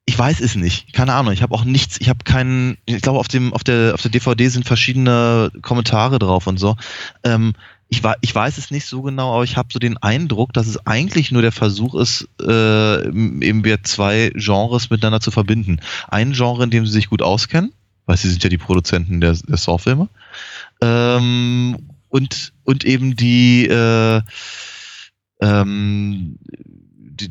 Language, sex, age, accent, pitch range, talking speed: German, male, 20-39, German, 100-120 Hz, 180 wpm